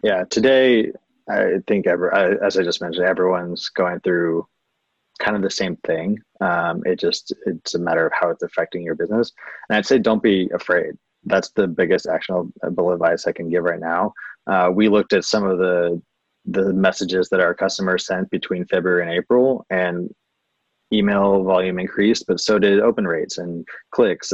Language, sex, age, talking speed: English, male, 20-39, 180 wpm